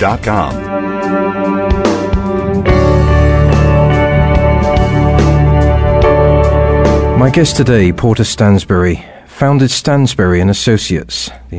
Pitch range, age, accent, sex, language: 90-115 Hz, 50-69, British, male, Italian